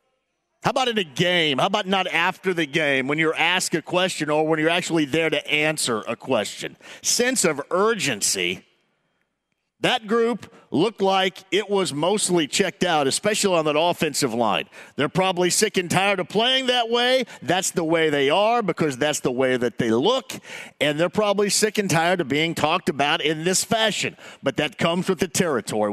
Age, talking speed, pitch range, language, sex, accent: 50-69, 190 wpm, 160-220 Hz, English, male, American